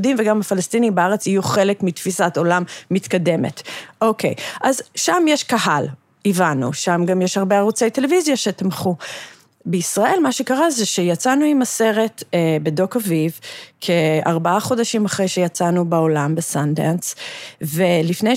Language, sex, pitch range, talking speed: Hebrew, female, 170-220 Hz, 125 wpm